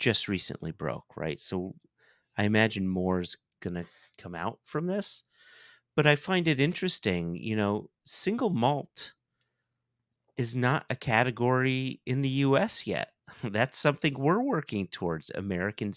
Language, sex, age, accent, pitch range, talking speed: English, male, 40-59, American, 95-130 Hz, 135 wpm